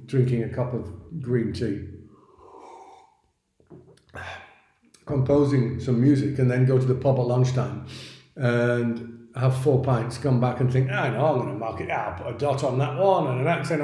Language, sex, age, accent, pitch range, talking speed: English, male, 50-69, British, 120-150 Hz, 180 wpm